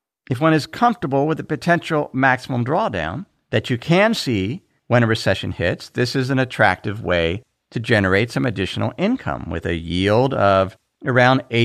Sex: male